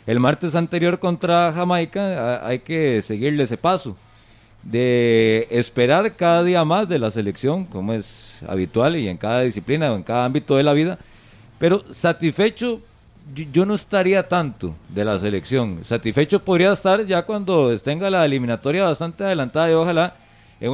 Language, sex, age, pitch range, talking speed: Spanish, male, 40-59, 115-170 Hz, 155 wpm